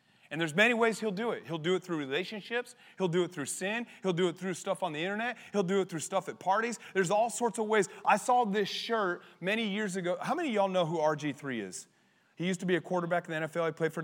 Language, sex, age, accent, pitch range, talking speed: English, male, 30-49, American, 150-195 Hz, 275 wpm